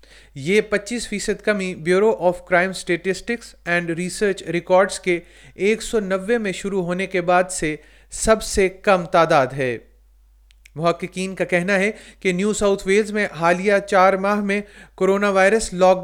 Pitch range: 180-205 Hz